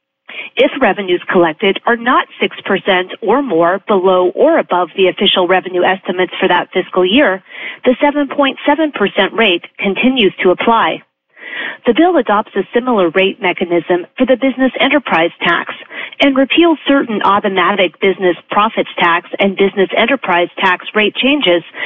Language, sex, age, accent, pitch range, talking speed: English, female, 40-59, American, 185-255 Hz, 135 wpm